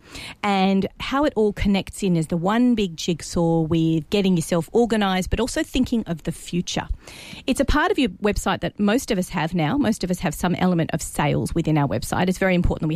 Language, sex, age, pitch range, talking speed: English, female, 40-59, 170-220 Hz, 220 wpm